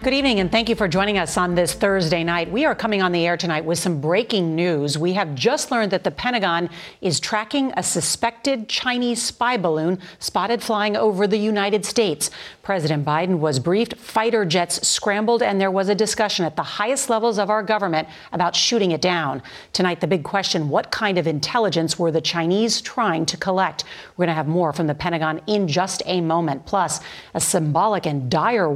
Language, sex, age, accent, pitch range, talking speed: English, female, 40-59, American, 165-210 Hz, 200 wpm